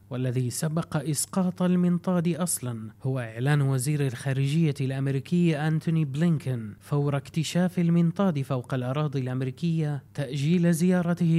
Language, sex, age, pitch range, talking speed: Arabic, male, 30-49, 135-170 Hz, 105 wpm